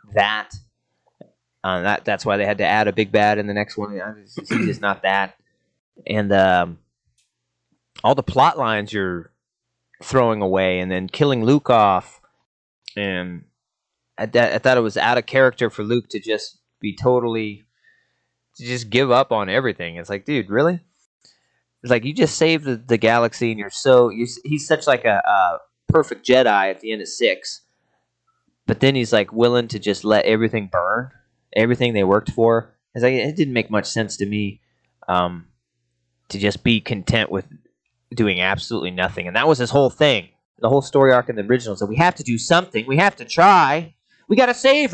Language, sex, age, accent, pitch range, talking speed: English, male, 30-49, American, 100-130 Hz, 190 wpm